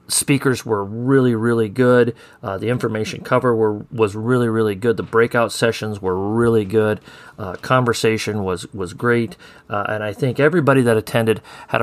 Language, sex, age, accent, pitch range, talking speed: English, male, 40-59, American, 100-120 Hz, 165 wpm